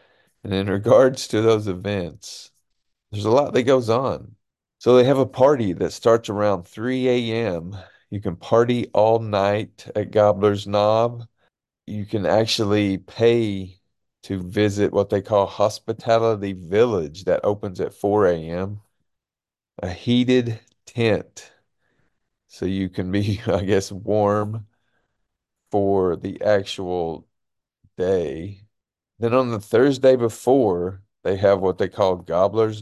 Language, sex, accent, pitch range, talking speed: English, male, American, 100-115 Hz, 130 wpm